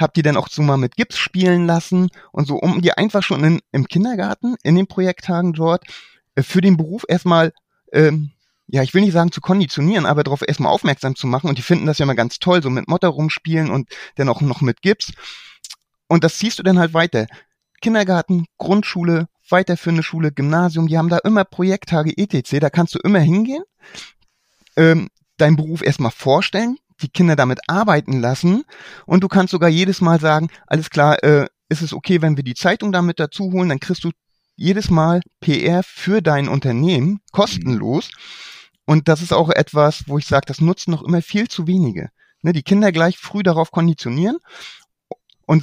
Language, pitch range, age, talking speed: German, 150-185 Hz, 30-49, 190 wpm